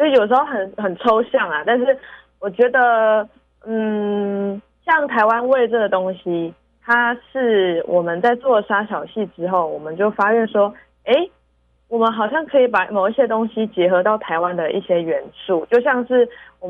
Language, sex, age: Chinese, female, 20-39